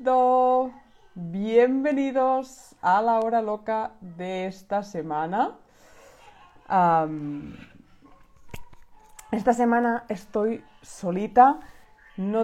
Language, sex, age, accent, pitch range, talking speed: Spanish, female, 20-39, Spanish, 180-245 Hz, 70 wpm